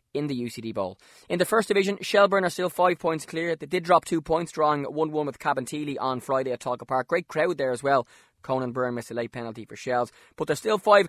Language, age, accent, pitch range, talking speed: English, 20-39, Irish, 130-175 Hz, 250 wpm